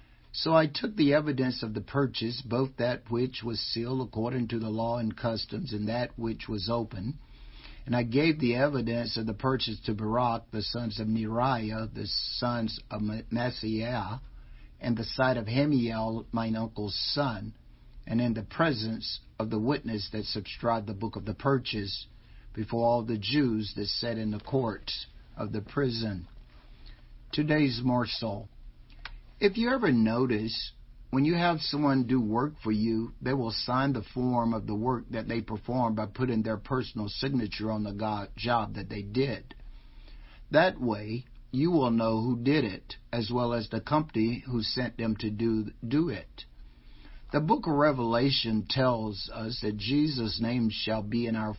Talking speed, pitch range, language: 170 wpm, 110-125 Hz, English